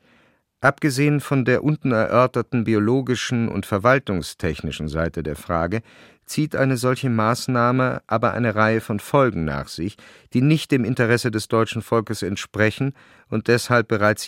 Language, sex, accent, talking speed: German, male, German, 140 wpm